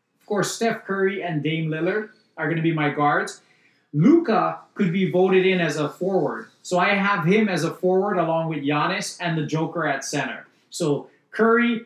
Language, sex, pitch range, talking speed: English, male, 155-190 Hz, 175 wpm